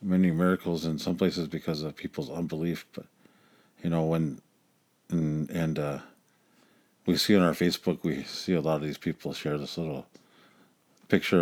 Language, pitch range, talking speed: English, 80-95 Hz, 170 wpm